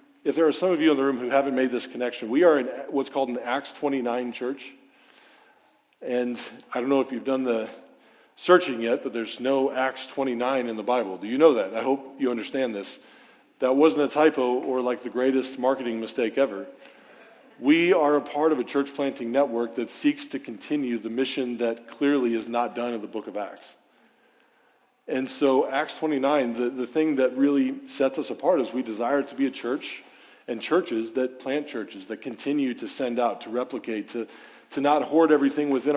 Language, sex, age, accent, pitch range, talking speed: English, male, 40-59, American, 120-140 Hz, 205 wpm